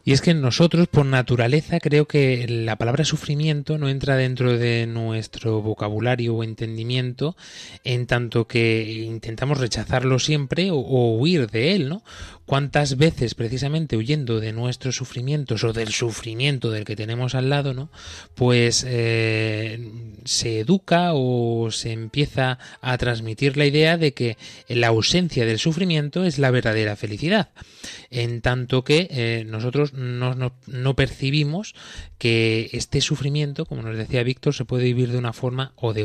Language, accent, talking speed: Spanish, Spanish, 150 wpm